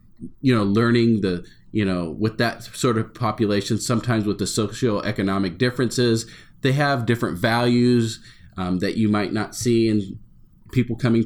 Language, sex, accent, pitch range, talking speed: English, male, American, 95-115 Hz, 155 wpm